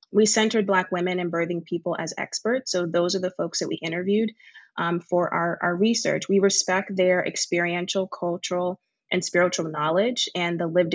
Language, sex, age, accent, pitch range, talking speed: English, female, 20-39, American, 175-200 Hz, 180 wpm